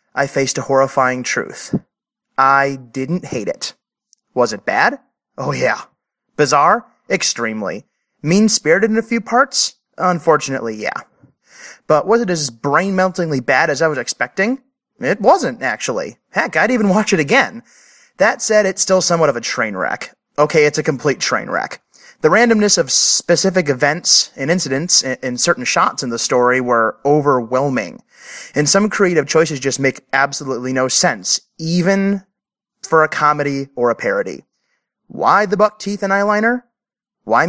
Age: 30-49